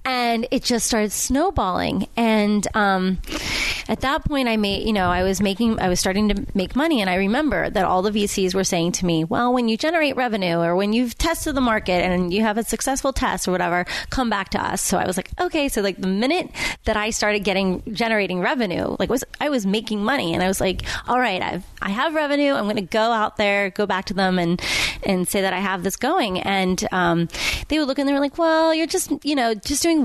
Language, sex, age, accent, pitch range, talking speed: English, female, 30-49, American, 190-255 Hz, 245 wpm